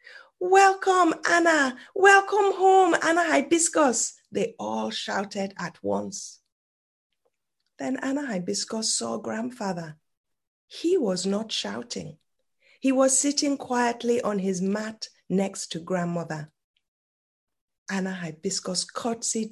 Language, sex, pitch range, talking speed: English, female, 160-235 Hz, 100 wpm